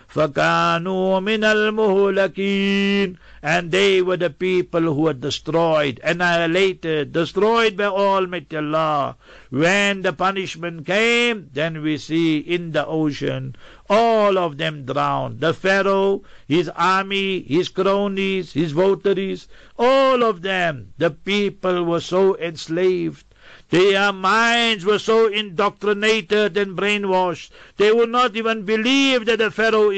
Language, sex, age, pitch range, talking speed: English, male, 60-79, 165-200 Hz, 120 wpm